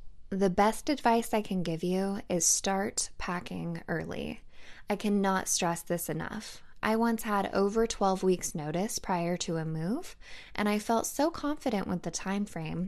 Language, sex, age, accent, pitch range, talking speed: English, female, 10-29, American, 175-230 Hz, 170 wpm